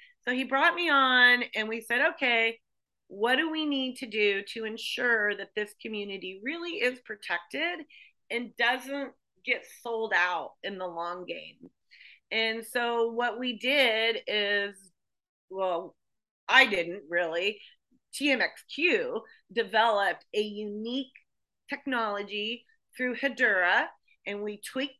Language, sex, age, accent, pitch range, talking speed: English, female, 40-59, American, 210-265 Hz, 125 wpm